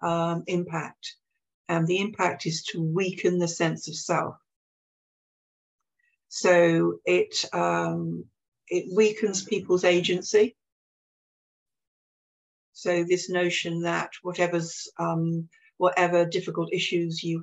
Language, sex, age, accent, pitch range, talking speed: English, female, 60-79, British, 160-180 Hz, 100 wpm